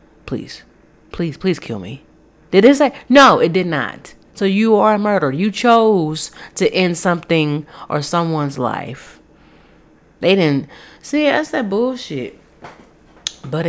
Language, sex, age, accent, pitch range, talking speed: English, female, 30-49, American, 150-205 Hz, 140 wpm